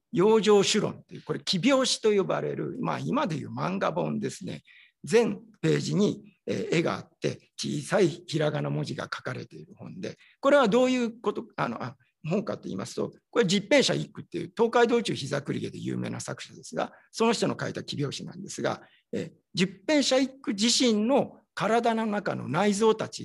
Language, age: Japanese, 50-69